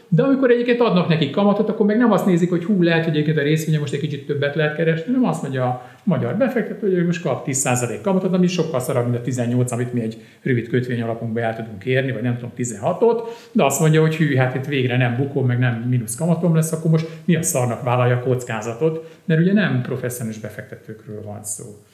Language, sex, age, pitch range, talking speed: Hungarian, male, 50-69, 125-160 Hz, 230 wpm